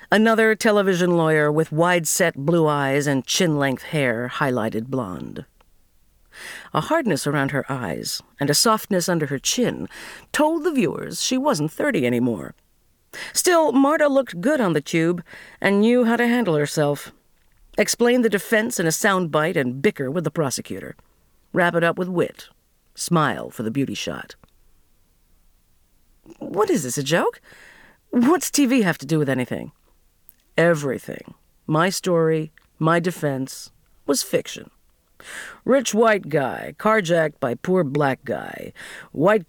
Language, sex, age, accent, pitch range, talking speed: English, female, 50-69, American, 135-195 Hz, 140 wpm